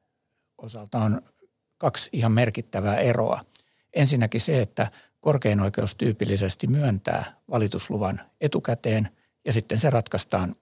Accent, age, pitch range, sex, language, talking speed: native, 60-79, 105-125 Hz, male, Finnish, 100 wpm